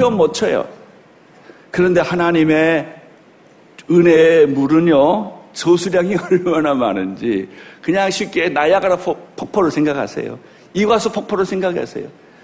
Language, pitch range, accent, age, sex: Korean, 180-255 Hz, native, 50-69, male